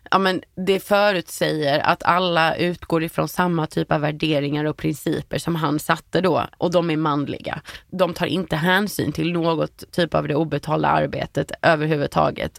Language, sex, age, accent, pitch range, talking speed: Swedish, female, 20-39, native, 160-180 Hz, 160 wpm